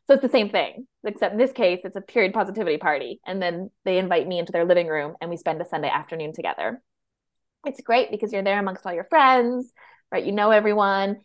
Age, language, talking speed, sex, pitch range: 20-39, English, 230 wpm, female, 175-230 Hz